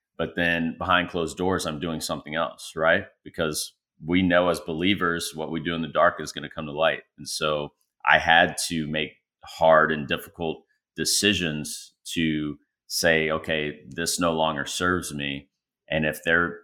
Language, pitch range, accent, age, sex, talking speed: English, 80-90 Hz, American, 30-49, male, 175 wpm